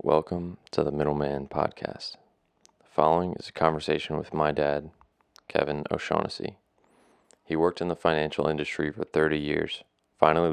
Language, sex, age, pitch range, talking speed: English, male, 30-49, 75-80 Hz, 140 wpm